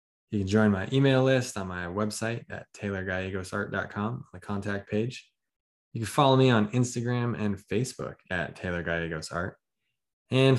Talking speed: 140 wpm